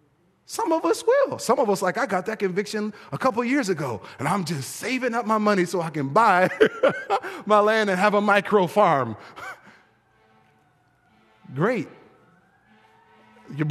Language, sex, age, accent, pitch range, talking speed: English, male, 30-49, American, 145-210 Hz, 160 wpm